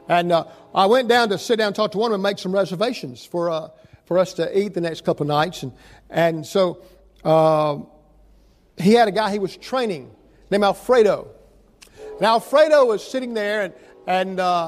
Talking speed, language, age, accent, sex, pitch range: 200 wpm, English, 50-69, American, male, 180-230 Hz